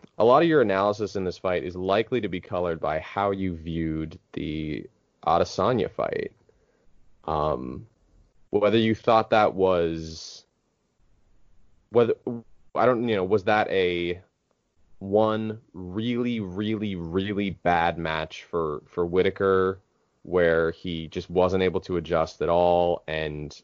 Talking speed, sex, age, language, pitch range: 135 wpm, male, 20-39, English, 85-105 Hz